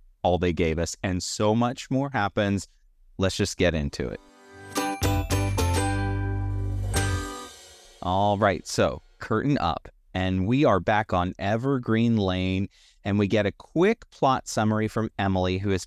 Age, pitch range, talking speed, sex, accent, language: 30-49, 85-110 Hz, 140 wpm, male, American, English